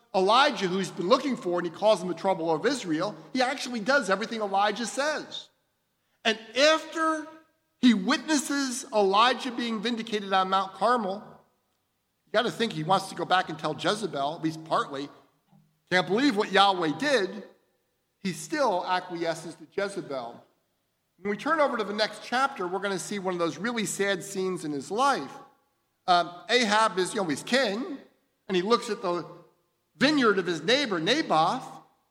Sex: male